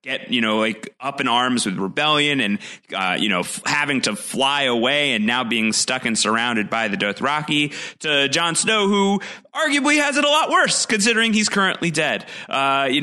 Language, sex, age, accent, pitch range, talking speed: English, male, 30-49, American, 105-155 Hz, 200 wpm